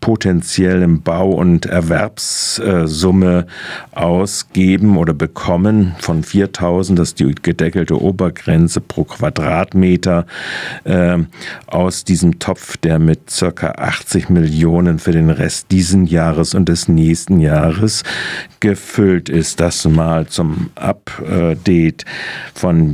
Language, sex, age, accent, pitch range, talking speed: German, male, 50-69, German, 85-95 Hz, 110 wpm